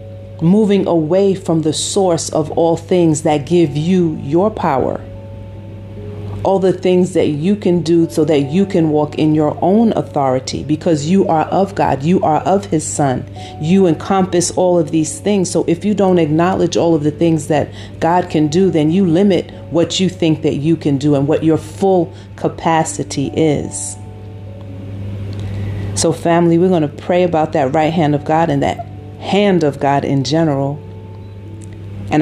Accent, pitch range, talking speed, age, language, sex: American, 105-165 Hz, 175 wpm, 40-59, English, female